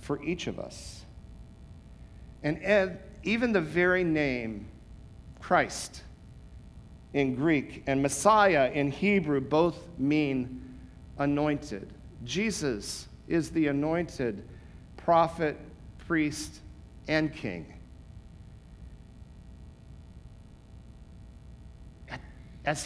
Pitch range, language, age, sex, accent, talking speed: 130-190 Hz, English, 50-69, male, American, 75 wpm